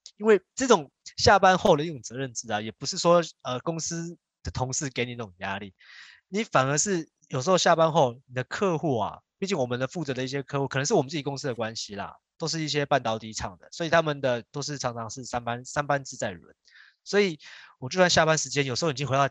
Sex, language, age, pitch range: male, Chinese, 20-39, 120-170 Hz